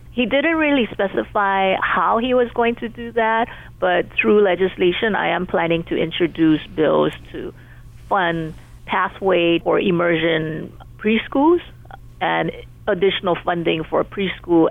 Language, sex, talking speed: English, female, 125 wpm